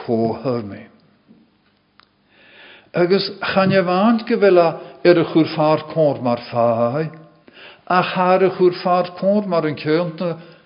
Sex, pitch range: male, 130-180 Hz